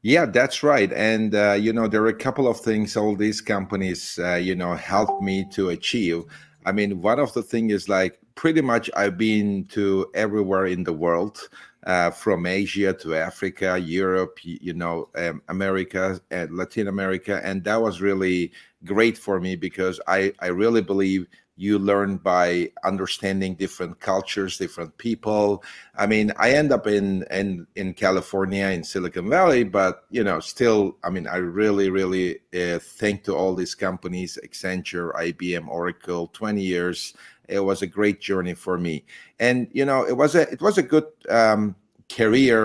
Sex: male